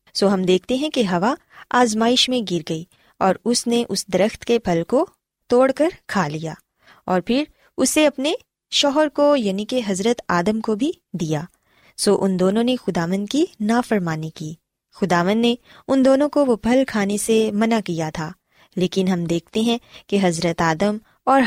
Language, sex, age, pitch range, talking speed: Urdu, female, 20-39, 185-245 Hz, 175 wpm